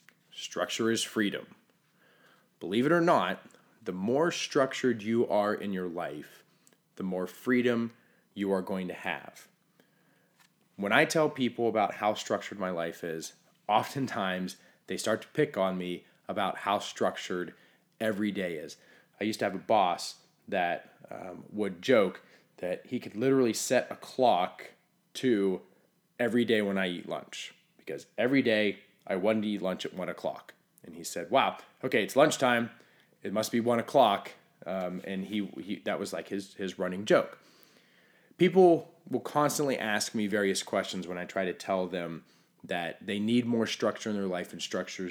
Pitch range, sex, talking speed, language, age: 95-125 Hz, male, 170 wpm, English, 20-39